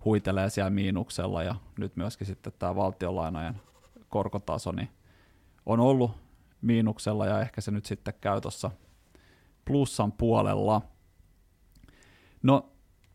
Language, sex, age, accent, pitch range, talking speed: Finnish, male, 20-39, native, 95-115 Hz, 105 wpm